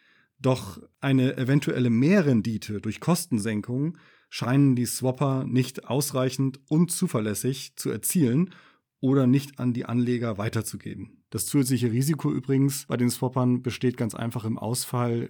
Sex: male